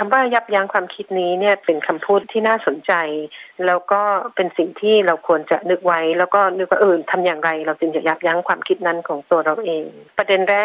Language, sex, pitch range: Thai, female, 165-205 Hz